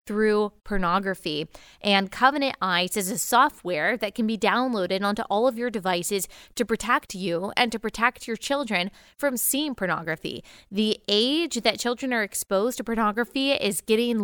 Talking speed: 160 wpm